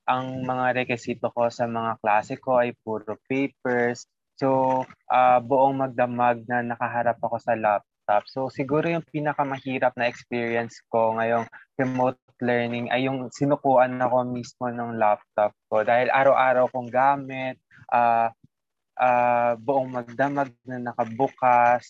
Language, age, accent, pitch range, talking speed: Filipino, 20-39, native, 120-135 Hz, 130 wpm